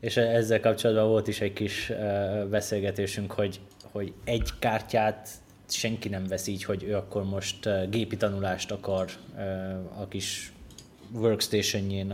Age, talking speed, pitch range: 20-39, 145 wpm, 95-105 Hz